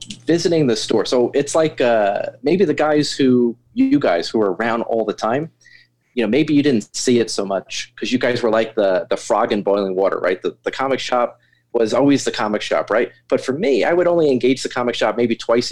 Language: English